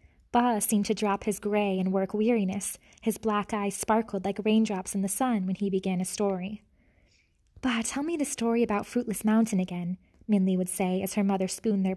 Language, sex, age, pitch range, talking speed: English, female, 20-39, 190-220 Hz, 200 wpm